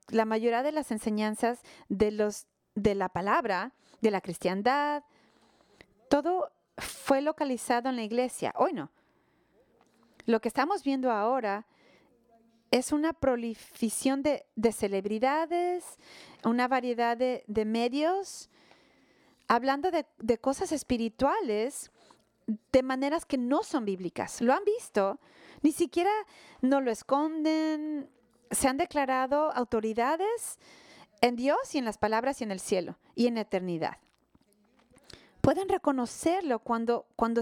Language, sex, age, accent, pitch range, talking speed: English, female, 40-59, Mexican, 220-290 Hz, 125 wpm